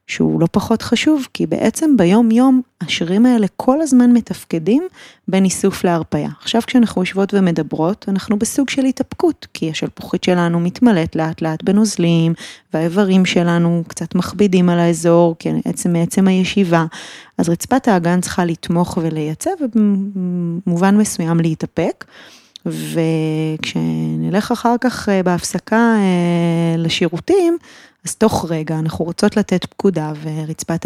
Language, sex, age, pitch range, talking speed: Hebrew, female, 20-39, 165-210 Hz, 115 wpm